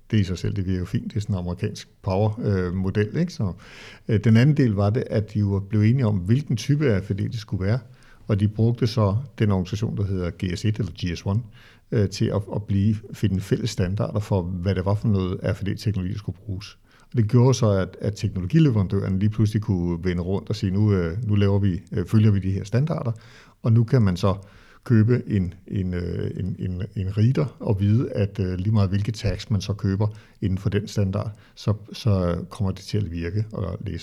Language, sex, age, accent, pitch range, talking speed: Danish, male, 60-79, native, 95-115 Hz, 215 wpm